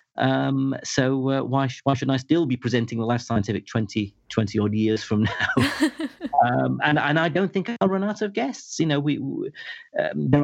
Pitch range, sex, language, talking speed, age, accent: 105-140 Hz, male, English, 200 wpm, 40-59, British